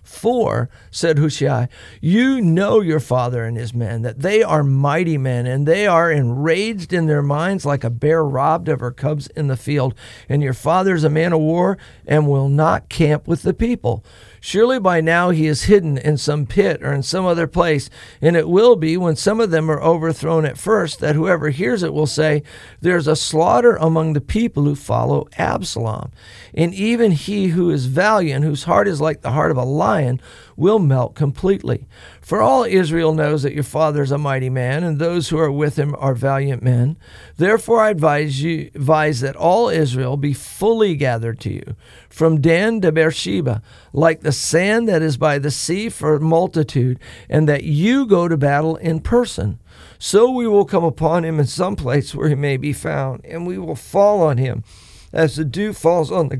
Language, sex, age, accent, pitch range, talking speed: English, male, 50-69, American, 135-170 Hz, 200 wpm